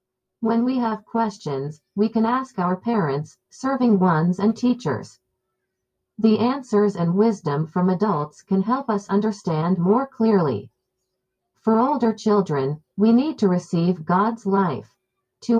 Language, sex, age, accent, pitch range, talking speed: Filipino, female, 50-69, American, 170-225 Hz, 135 wpm